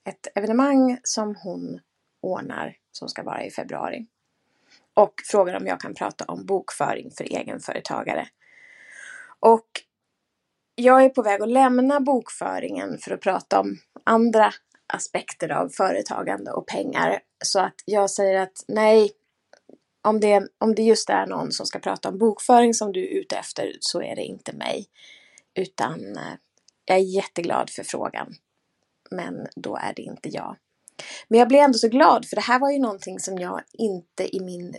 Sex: female